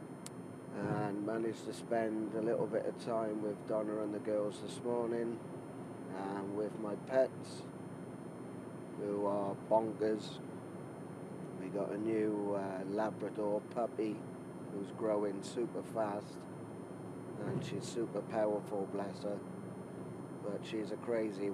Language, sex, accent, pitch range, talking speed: English, male, British, 105-120 Hz, 120 wpm